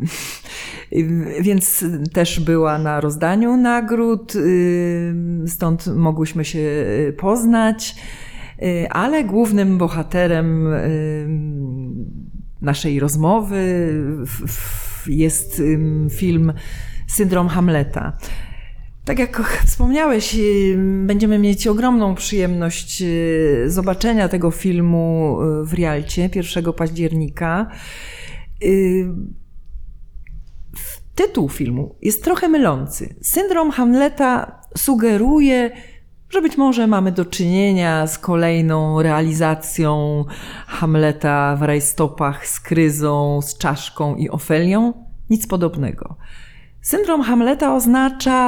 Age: 40-59